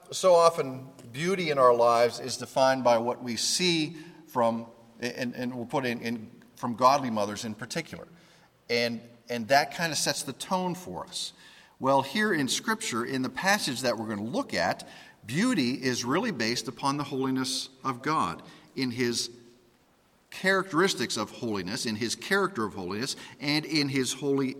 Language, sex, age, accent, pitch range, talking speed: English, male, 50-69, American, 115-155 Hz, 175 wpm